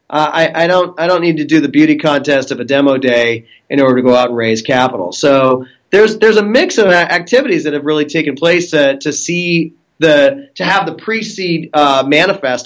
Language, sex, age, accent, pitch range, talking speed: English, male, 30-49, American, 135-175 Hz, 225 wpm